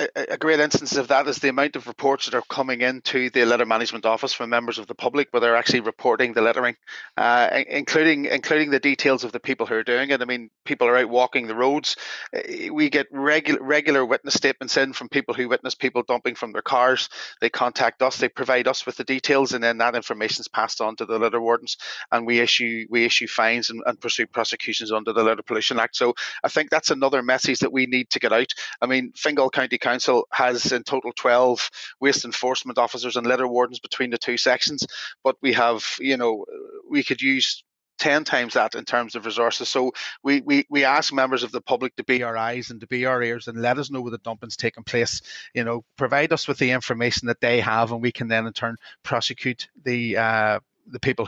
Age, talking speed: 30-49, 230 wpm